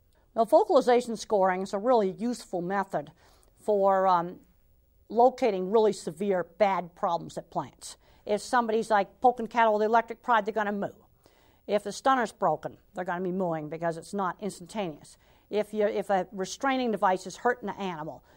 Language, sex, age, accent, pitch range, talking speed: English, female, 50-69, American, 190-230 Hz, 175 wpm